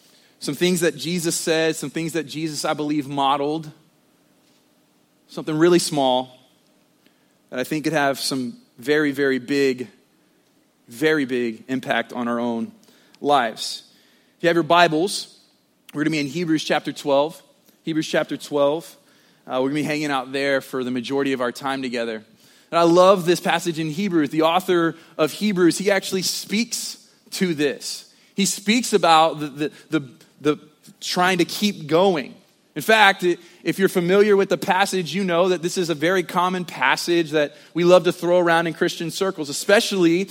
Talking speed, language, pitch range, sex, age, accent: 170 wpm, English, 145-180 Hz, male, 30-49, American